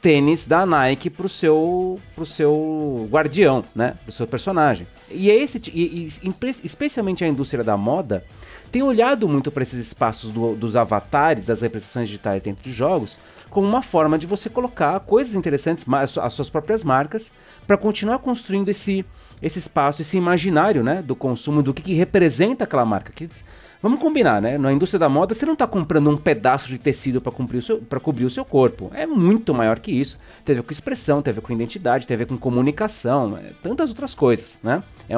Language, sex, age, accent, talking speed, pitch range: Portuguese, male, 30-49, Brazilian, 200 wpm, 120-180 Hz